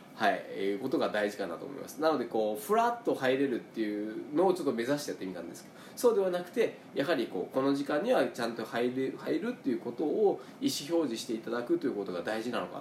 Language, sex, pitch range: Japanese, male, 105-175 Hz